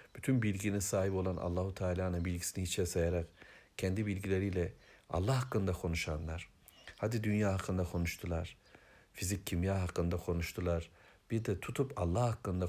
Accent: native